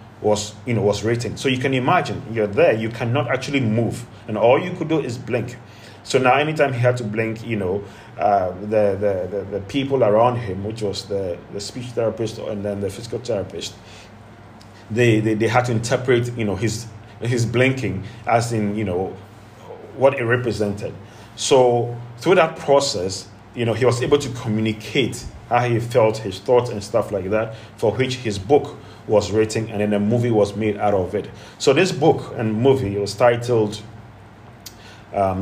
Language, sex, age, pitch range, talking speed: English, male, 30-49, 105-125 Hz, 190 wpm